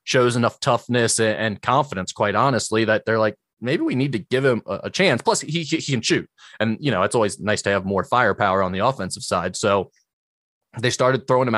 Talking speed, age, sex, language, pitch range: 220 wpm, 20-39, male, English, 110-135 Hz